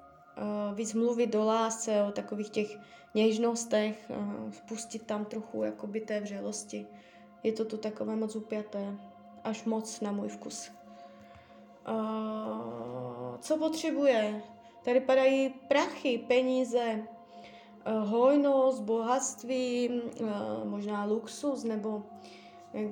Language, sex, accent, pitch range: Czech, female, native, 200-235 Hz